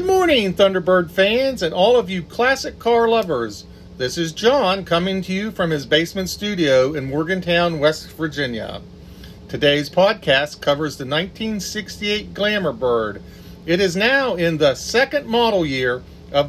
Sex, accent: male, American